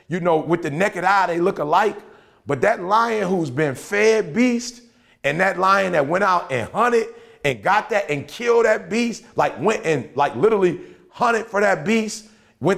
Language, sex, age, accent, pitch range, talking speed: English, male, 30-49, American, 155-200 Hz, 195 wpm